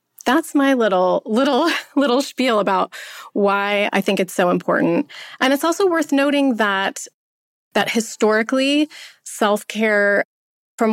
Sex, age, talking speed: female, 30-49, 130 wpm